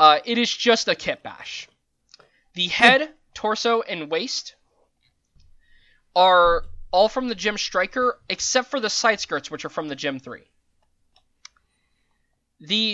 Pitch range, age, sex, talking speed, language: 145-215 Hz, 20-39, male, 140 wpm, English